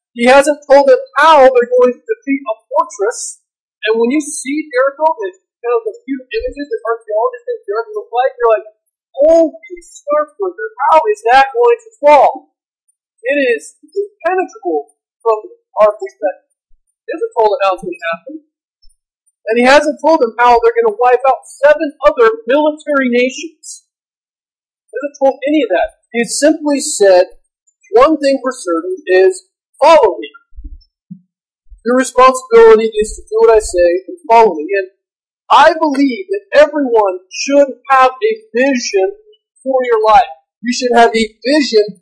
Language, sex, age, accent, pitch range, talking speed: English, male, 40-59, American, 235-350 Hz, 165 wpm